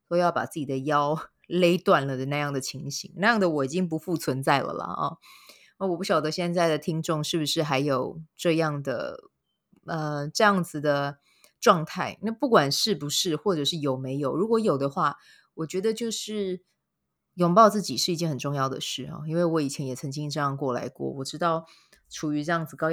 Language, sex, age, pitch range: Chinese, female, 20-39, 140-180 Hz